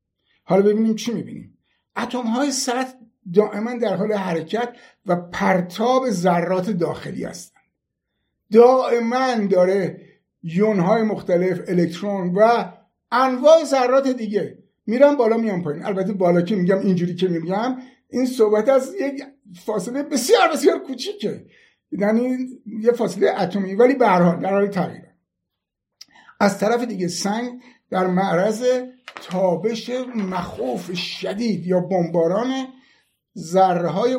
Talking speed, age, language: 110 wpm, 60-79, Persian